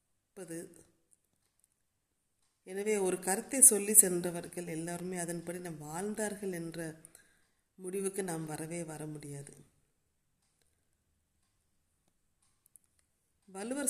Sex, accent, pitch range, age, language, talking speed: female, native, 155-190 Hz, 30-49, Tamil, 65 wpm